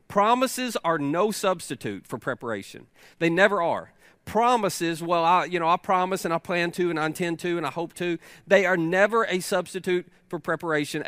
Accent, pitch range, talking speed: American, 150-195 Hz, 190 wpm